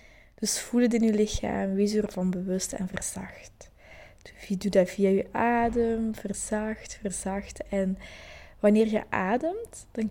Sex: female